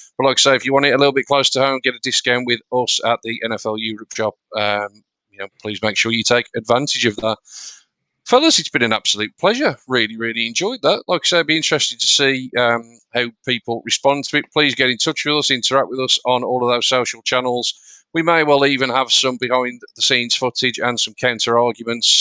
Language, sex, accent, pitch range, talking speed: English, male, British, 115-145 Hz, 230 wpm